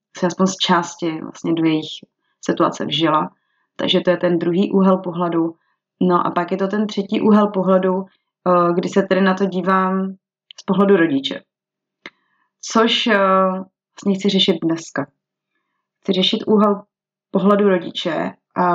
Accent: native